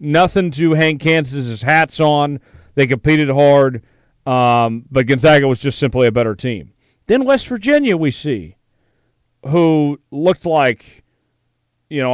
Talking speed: 140 wpm